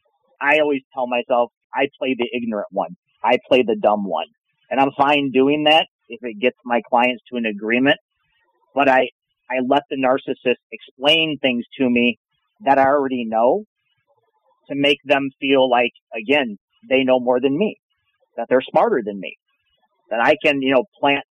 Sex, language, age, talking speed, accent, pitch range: male, English, 40-59, 175 wpm, American, 125-150 Hz